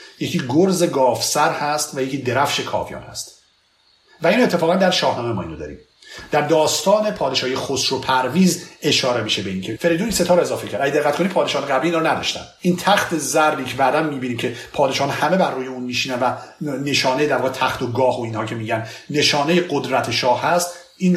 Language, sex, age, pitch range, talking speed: Persian, male, 50-69, 125-165 Hz, 190 wpm